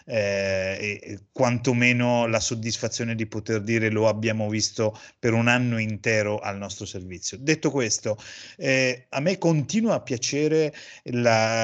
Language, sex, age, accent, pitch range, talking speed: Italian, male, 30-49, native, 110-135 Hz, 140 wpm